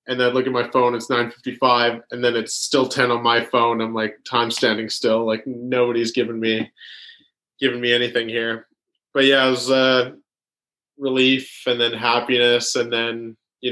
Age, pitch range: 20-39, 115-130 Hz